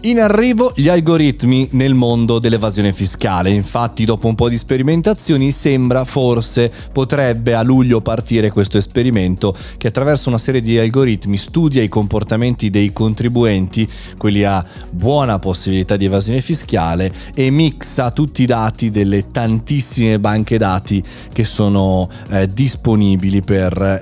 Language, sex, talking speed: Italian, male, 135 wpm